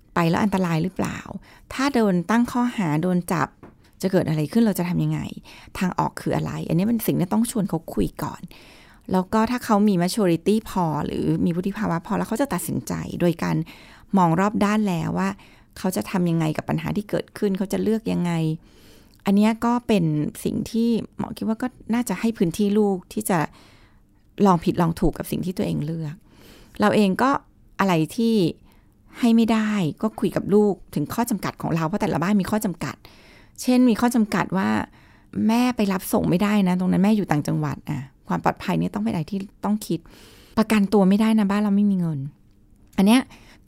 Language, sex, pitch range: Thai, female, 165-220 Hz